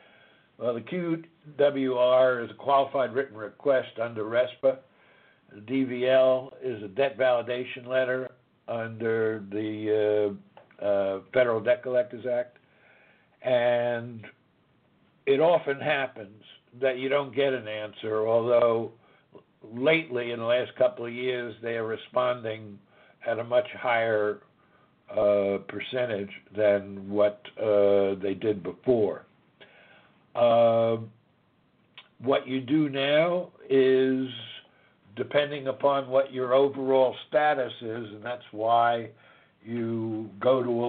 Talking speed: 115 wpm